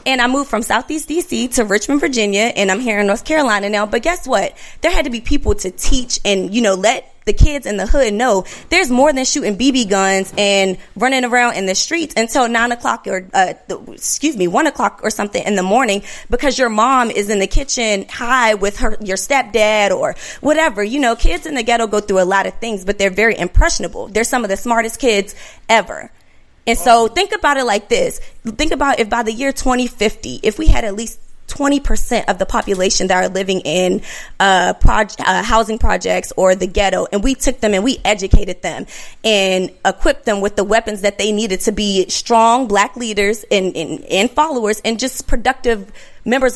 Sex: female